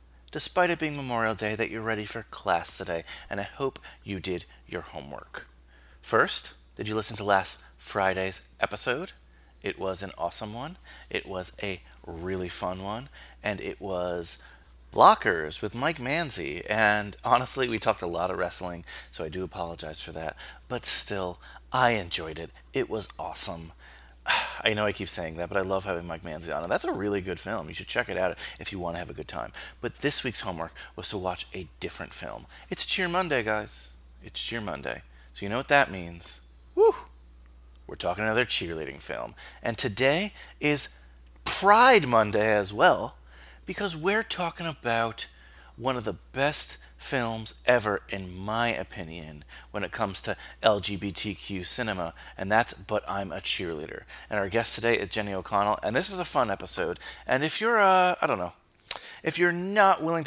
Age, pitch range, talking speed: 30-49, 80-115 Hz, 180 wpm